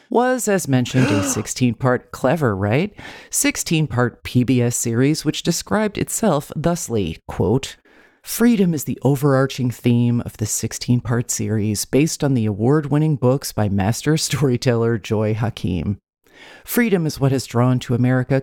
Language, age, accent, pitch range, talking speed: English, 40-59, American, 115-155 Hz, 135 wpm